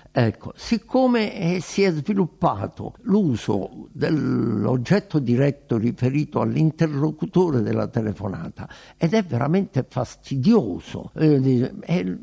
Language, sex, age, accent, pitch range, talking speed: Italian, male, 60-79, native, 115-165 Hz, 95 wpm